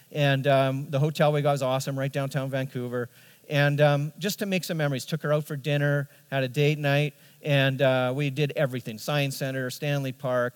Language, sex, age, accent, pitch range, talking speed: English, male, 40-59, American, 130-155 Hz, 205 wpm